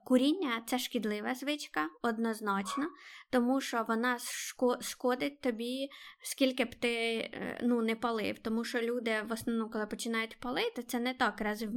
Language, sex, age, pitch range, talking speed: Ukrainian, female, 20-39, 225-260 Hz, 155 wpm